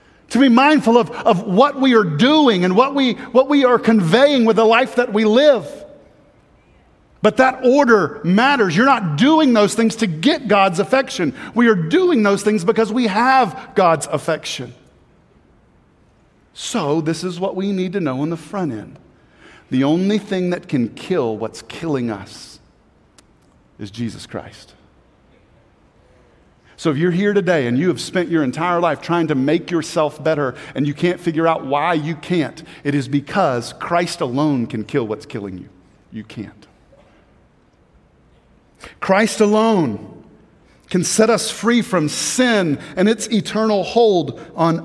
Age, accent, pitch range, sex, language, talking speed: 50-69, American, 160-230 Hz, male, English, 160 wpm